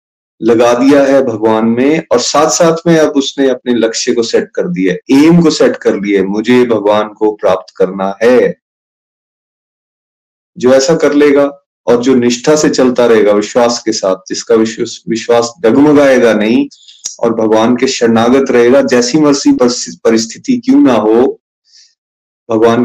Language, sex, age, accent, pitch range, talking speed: Hindi, male, 30-49, native, 115-155 Hz, 155 wpm